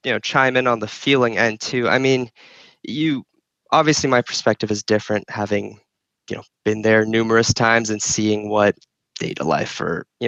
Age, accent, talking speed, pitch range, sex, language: 10-29, American, 185 wpm, 105-115 Hz, male, English